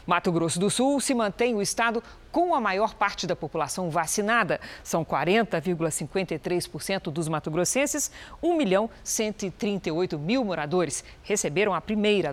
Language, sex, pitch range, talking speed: Portuguese, female, 175-240 Hz, 120 wpm